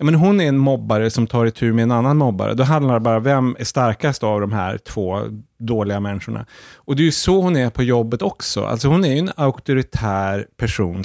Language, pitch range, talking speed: English, 110-135 Hz, 235 wpm